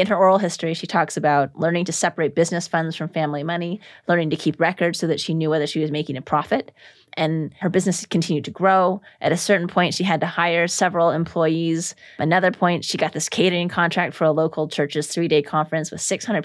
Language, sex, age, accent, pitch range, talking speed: English, female, 30-49, American, 155-185 Hz, 220 wpm